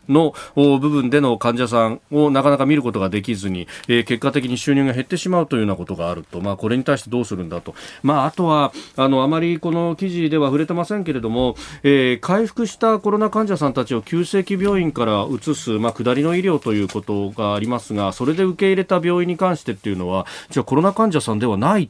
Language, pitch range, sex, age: Japanese, 110-165 Hz, male, 40-59